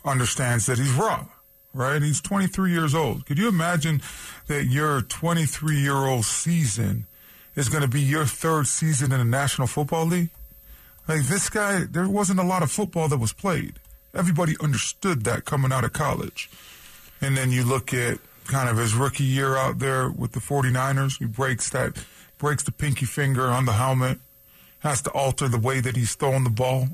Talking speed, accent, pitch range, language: 185 wpm, American, 125-155 Hz, English